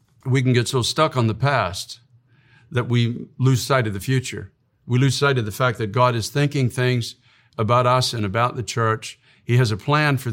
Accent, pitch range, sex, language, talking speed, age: American, 110-135 Hz, male, English, 215 wpm, 50-69